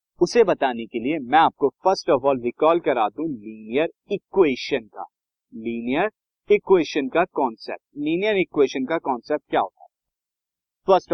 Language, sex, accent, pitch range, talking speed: Hindi, male, native, 125-185 Hz, 145 wpm